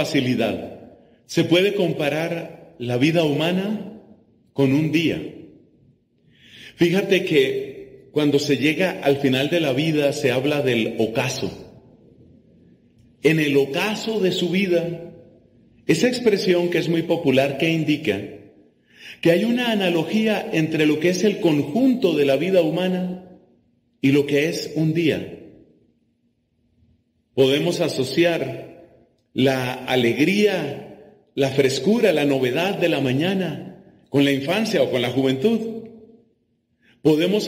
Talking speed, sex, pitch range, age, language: 125 wpm, male, 140-185 Hz, 40-59, Spanish